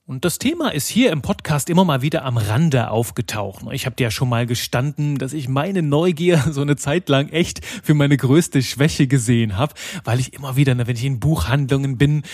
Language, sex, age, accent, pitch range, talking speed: German, male, 30-49, German, 130-160 Hz, 215 wpm